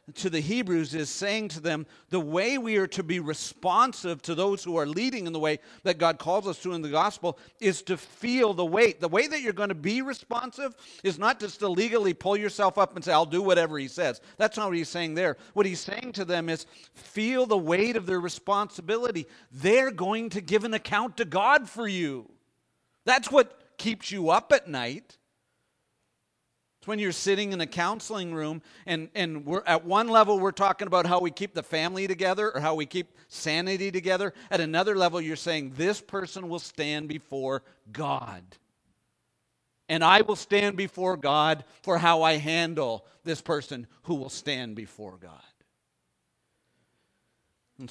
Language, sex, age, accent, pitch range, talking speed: English, male, 50-69, American, 155-205 Hz, 185 wpm